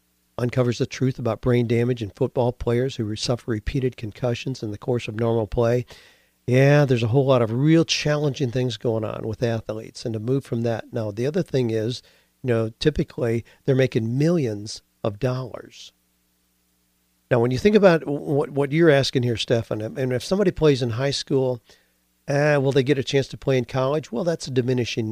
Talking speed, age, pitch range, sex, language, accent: 195 wpm, 50-69, 110-140 Hz, male, English, American